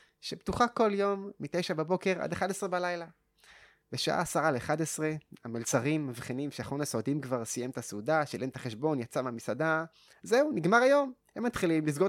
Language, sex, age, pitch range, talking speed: Hebrew, male, 20-39, 140-195 Hz, 160 wpm